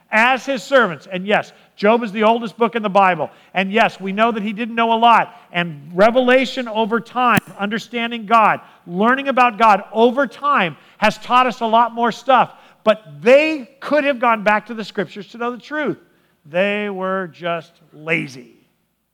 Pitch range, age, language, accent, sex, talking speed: 180-235 Hz, 50-69, English, American, male, 180 wpm